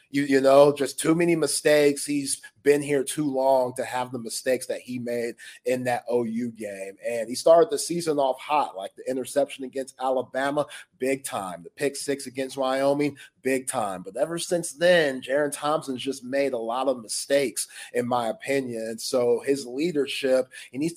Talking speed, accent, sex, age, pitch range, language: 185 wpm, American, male, 30-49, 130-165 Hz, English